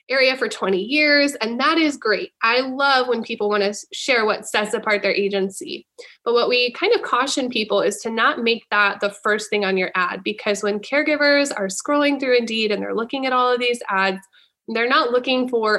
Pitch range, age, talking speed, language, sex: 205-265 Hz, 20-39, 215 wpm, English, female